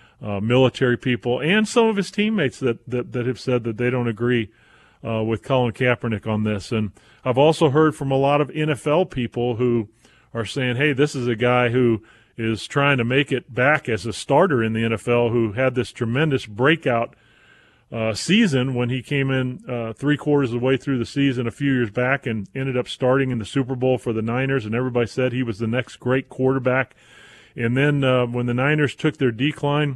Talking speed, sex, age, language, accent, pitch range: 210 wpm, male, 40-59, English, American, 120-140 Hz